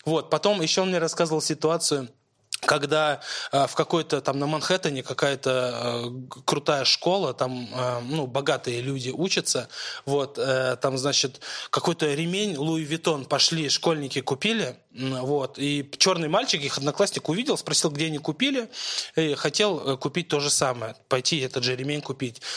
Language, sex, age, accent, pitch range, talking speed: Russian, male, 20-39, native, 135-175 Hz, 140 wpm